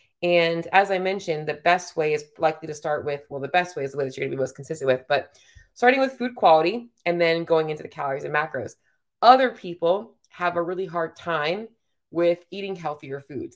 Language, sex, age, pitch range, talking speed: English, female, 20-39, 150-180 Hz, 225 wpm